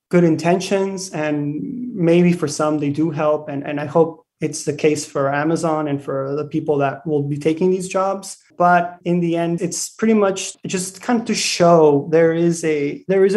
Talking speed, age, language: 200 wpm, 20-39, English